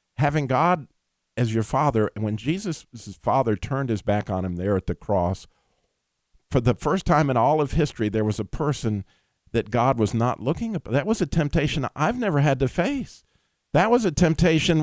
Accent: American